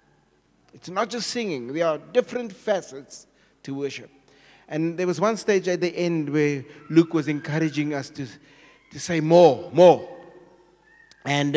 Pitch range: 145-200 Hz